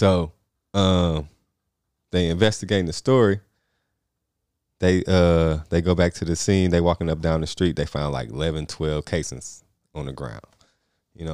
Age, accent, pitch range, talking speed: 20-39, American, 80-100 Hz, 165 wpm